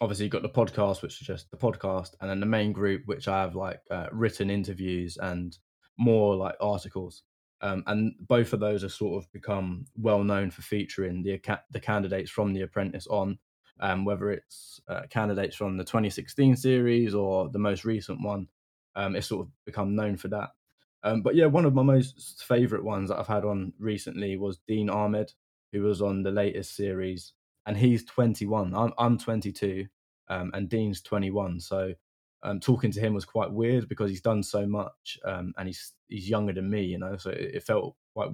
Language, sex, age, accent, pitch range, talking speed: English, male, 10-29, British, 95-110 Hz, 200 wpm